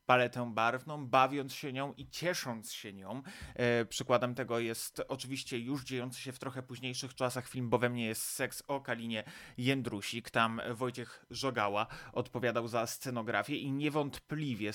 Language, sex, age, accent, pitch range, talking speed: Polish, male, 20-39, native, 110-130 Hz, 150 wpm